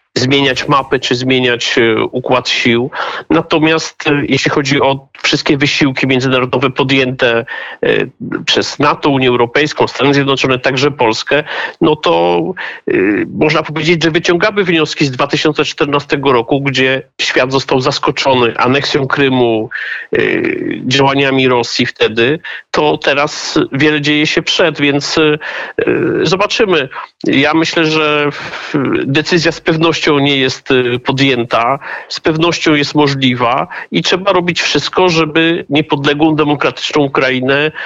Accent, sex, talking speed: native, male, 110 wpm